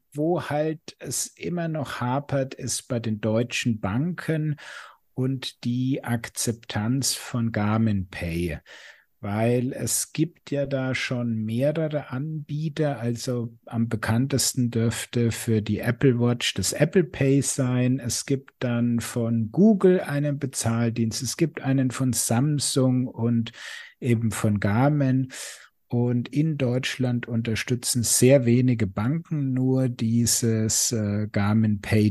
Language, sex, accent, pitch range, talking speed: German, male, German, 115-140 Hz, 120 wpm